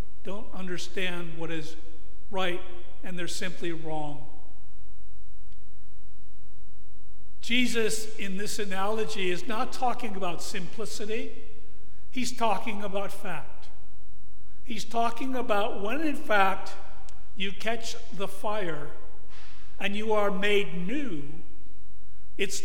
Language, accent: English, American